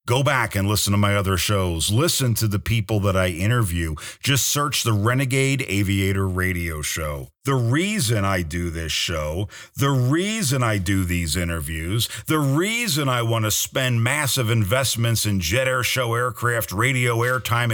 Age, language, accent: 50-69, English, American